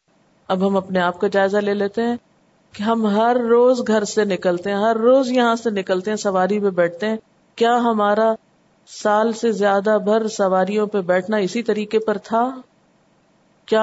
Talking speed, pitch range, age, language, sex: 180 wpm, 190-245 Hz, 50-69, Urdu, female